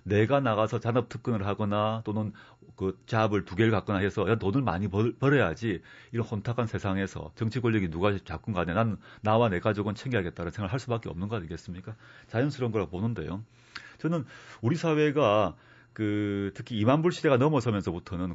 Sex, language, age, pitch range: male, Korean, 40-59, 105-140 Hz